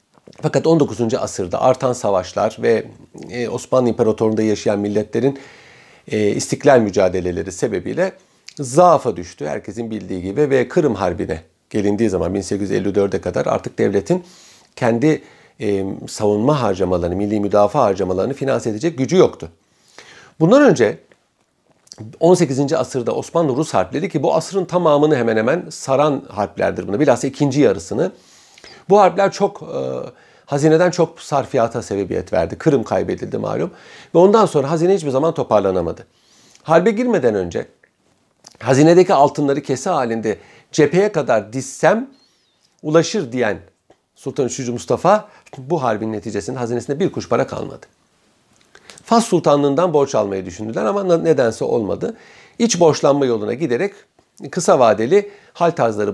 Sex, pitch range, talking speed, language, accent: male, 110-165 Hz, 120 wpm, Turkish, native